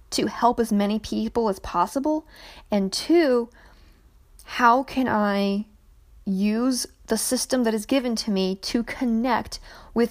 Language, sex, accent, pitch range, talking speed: English, female, American, 195-255 Hz, 135 wpm